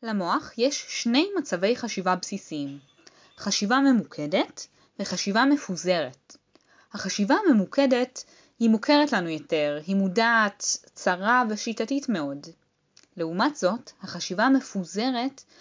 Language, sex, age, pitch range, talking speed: Hebrew, female, 10-29, 185-265 Hz, 95 wpm